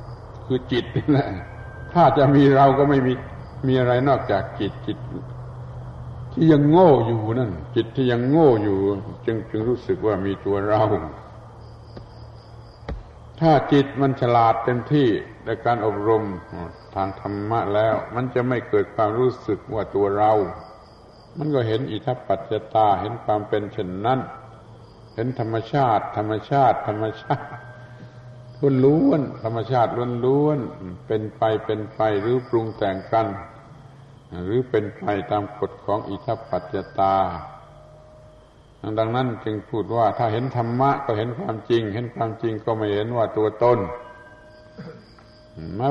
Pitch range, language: 105-125 Hz, Thai